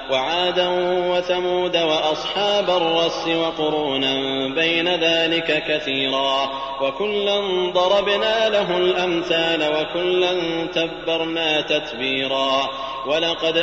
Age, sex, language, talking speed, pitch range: 30-49, male, Arabic, 70 wpm, 155-180 Hz